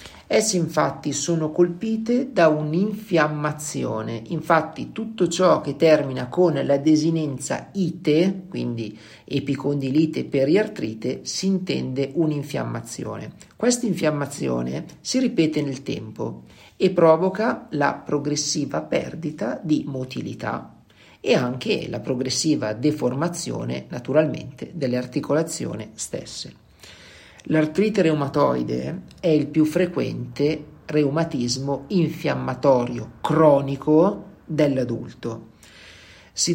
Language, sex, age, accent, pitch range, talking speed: Italian, male, 50-69, native, 130-165 Hz, 90 wpm